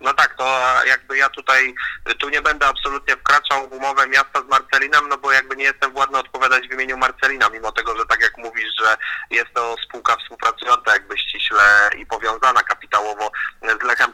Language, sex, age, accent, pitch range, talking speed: Polish, male, 30-49, native, 125-140 Hz, 185 wpm